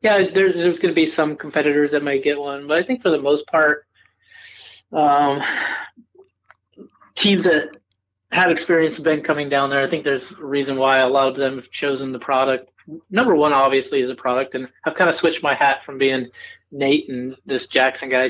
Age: 30-49